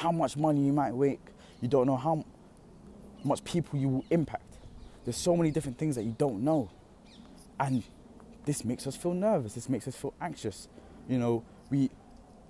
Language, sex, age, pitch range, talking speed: English, male, 20-39, 105-145 Hz, 180 wpm